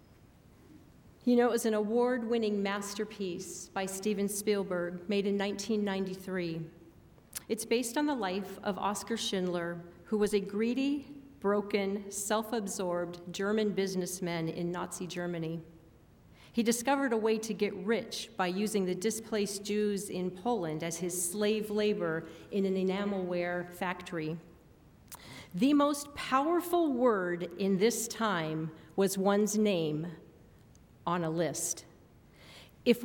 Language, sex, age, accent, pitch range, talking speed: English, female, 40-59, American, 180-230 Hz, 125 wpm